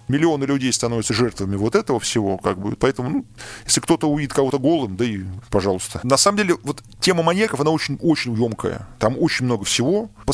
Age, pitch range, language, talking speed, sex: 20-39, 115-140 Hz, Russian, 195 wpm, male